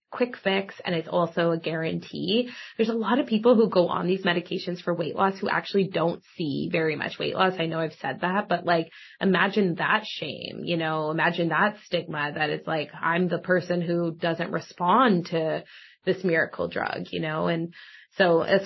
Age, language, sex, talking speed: 20-39, English, female, 195 wpm